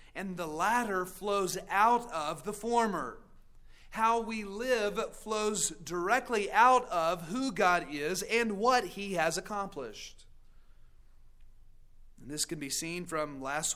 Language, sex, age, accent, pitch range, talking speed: English, male, 40-59, American, 155-210 Hz, 130 wpm